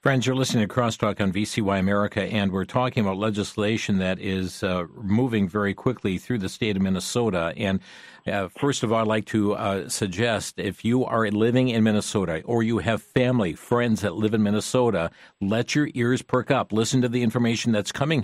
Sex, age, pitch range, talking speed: male, 50-69, 110-145 Hz, 195 wpm